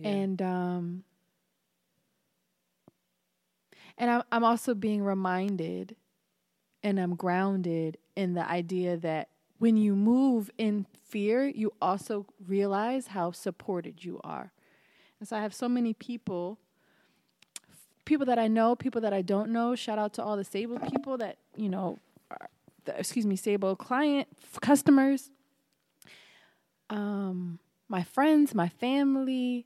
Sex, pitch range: female, 180-240 Hz